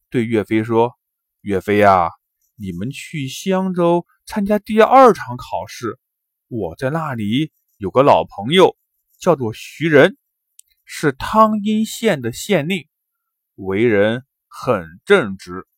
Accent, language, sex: native, Chinese, male